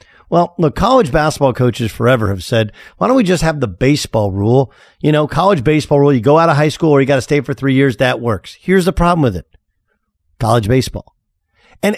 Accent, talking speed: American, 225 wpm